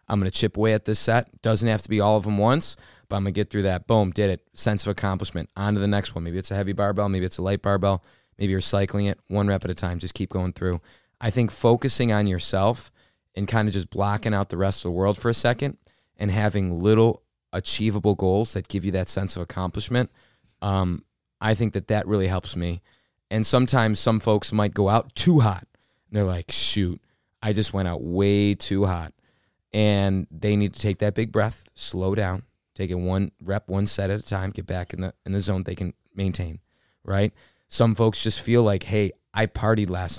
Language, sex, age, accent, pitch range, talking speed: English, male, 20-39, American, 95-110 Hz, 230 wpm